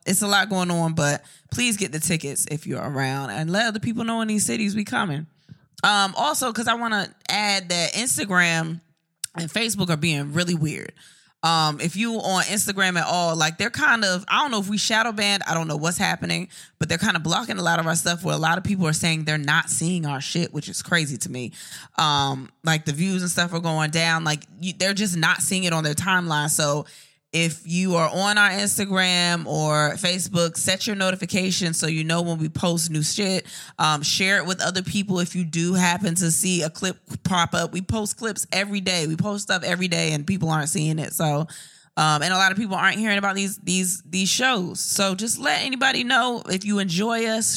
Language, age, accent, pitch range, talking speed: English, 20-39, American, 160-200 Hz, 225 wpm